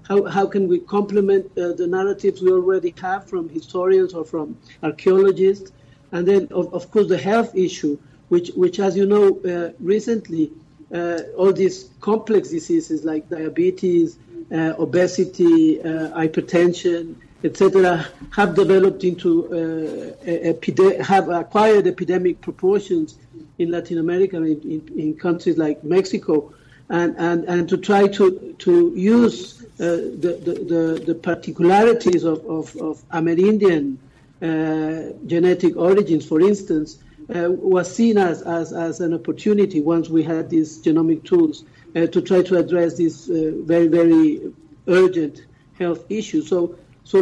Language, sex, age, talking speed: English, male, 50-69, 145 wpm